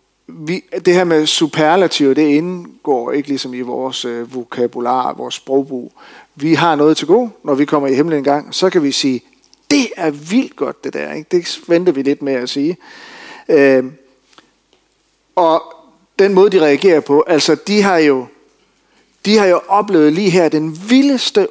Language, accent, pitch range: Danish, native, 140-200 Hz